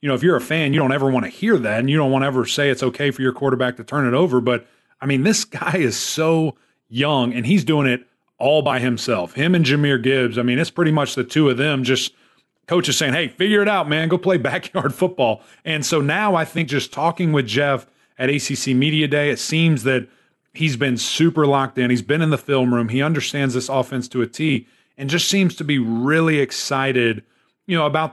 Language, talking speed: English, 240 wpm